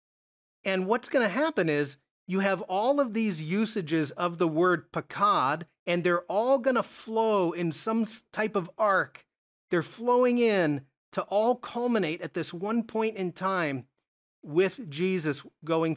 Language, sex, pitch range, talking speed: English, male, 150-195 Hz, 160 wpm